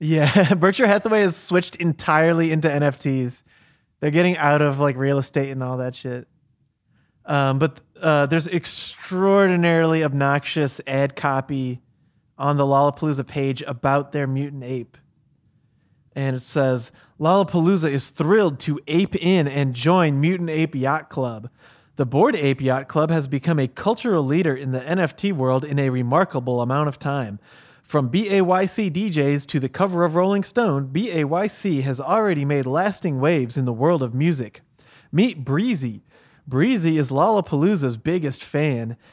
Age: 30-49